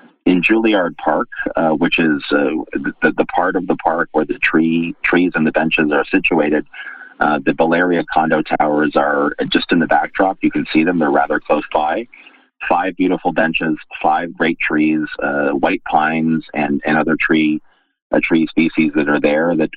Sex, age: male, 40-59